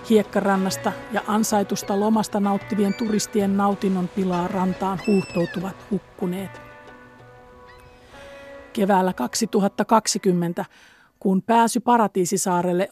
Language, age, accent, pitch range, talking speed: Finnish, 50-69, native, 180-215 Hz, 75 wpm